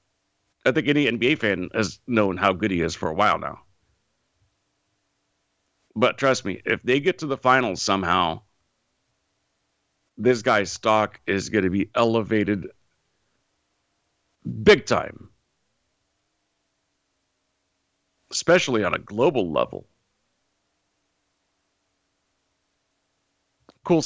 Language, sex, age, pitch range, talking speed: English, male, 50-69, 95-120 Hz, 100 wpm